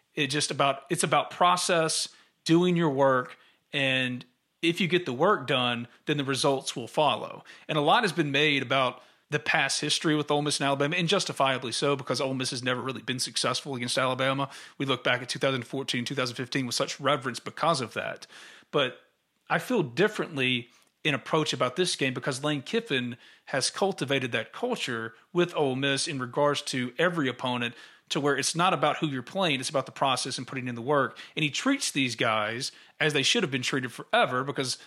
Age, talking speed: 40-59, 195 wpm